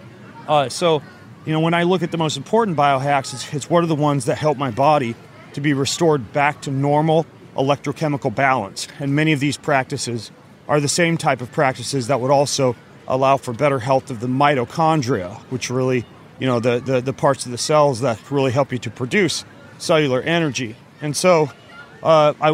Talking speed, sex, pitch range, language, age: 195 wpm, male, 125-150 Hz, English, 30-49